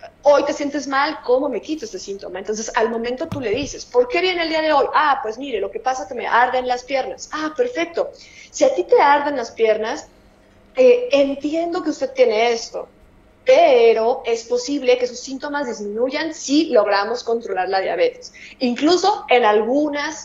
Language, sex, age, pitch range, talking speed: Spanish, female, 30-49, 225-290 Hz, 190 wpm